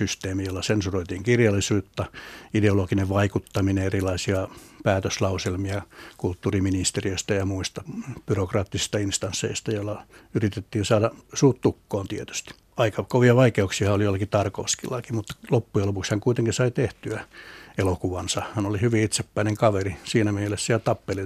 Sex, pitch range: male, 100-115 Hz